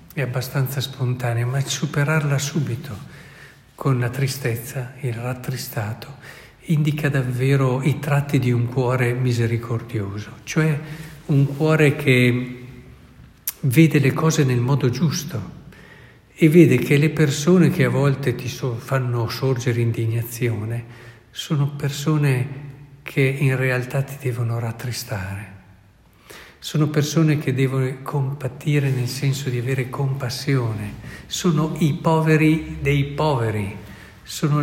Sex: male